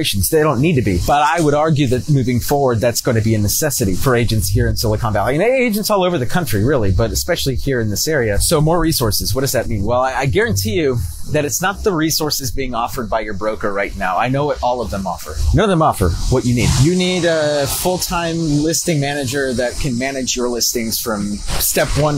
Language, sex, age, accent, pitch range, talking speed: English, male, 30-49, American, 110-145 Hz, 240 wpm